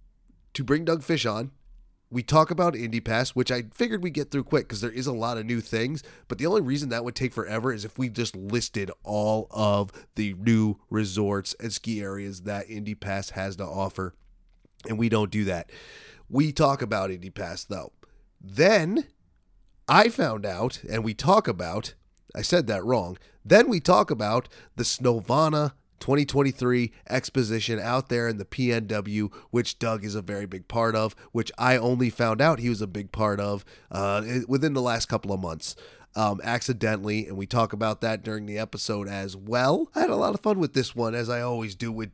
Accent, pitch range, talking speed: American, 105-125 Hz, 200 wpm